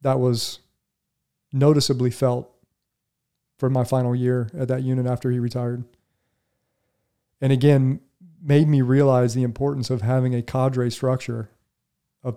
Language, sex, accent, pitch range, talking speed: English, male, American, 125-135 Hz, 130 wpm